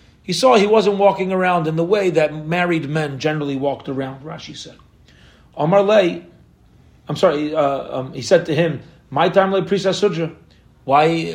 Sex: male